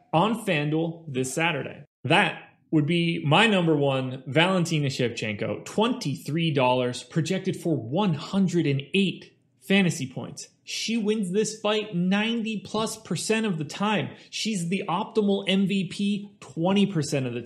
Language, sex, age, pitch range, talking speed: English, male, 30-49, 140-195 Hz, 120 wpm